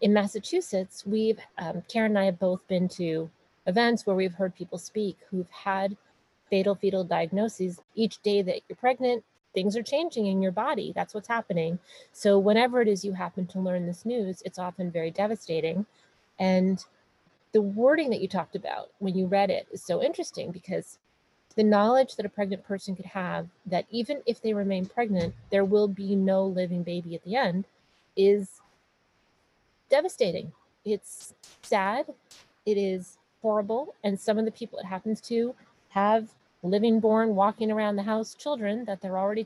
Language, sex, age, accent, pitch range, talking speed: English, female, 30-49, American, 190-220 Hz, 175 wpm